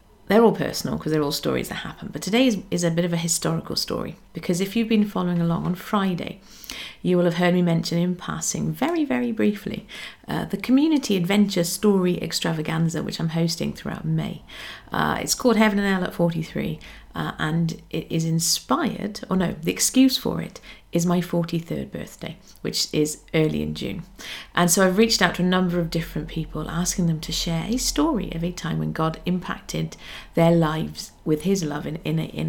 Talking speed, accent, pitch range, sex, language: 195 wpm, British, 165-200 Hz, female, English